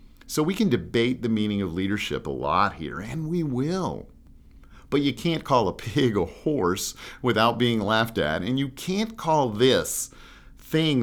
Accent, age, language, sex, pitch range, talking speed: American, 50-69, English, male, 100-140 Hz, 175 wpm